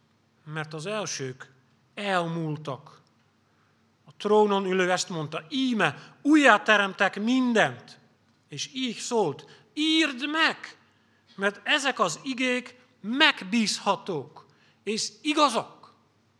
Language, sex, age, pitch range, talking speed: Hungarian, male, 40-59, 145-205 Hz, 90 wpm